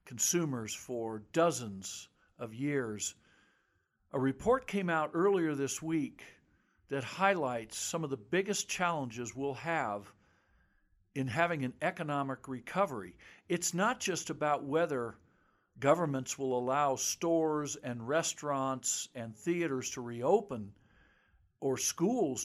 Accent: American